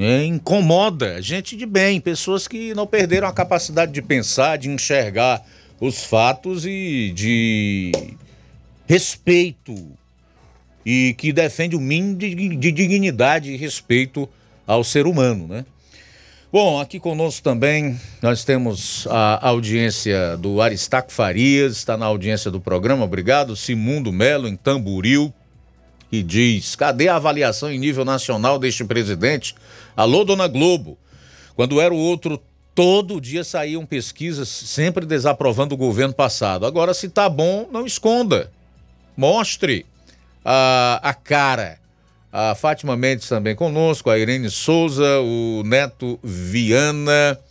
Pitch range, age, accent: 110-155 Hz, 50-69, Brazilian